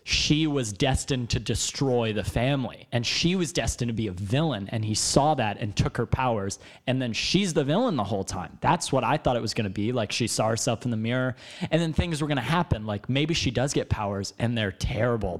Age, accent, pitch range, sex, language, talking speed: 30-49, American, 115-165 Hz, male, English, 245 wpm